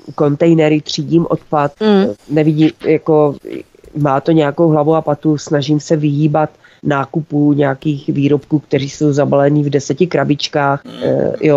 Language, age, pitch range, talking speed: Czech, 30-49, 145-160 Hz, 125 wpm